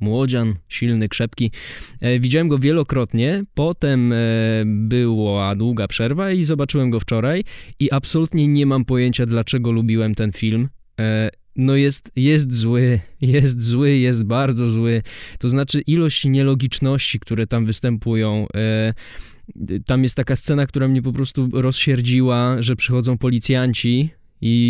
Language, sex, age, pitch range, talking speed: Polish, male, 20-39, 115-135 Hz, 125 wpm